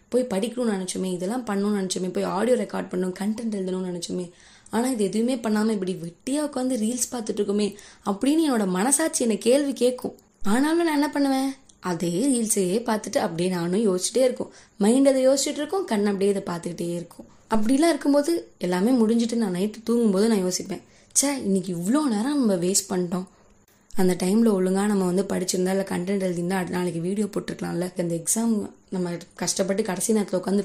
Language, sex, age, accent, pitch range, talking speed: Tamil, female, 20-39, native, 185-250 Hz, 165 wpm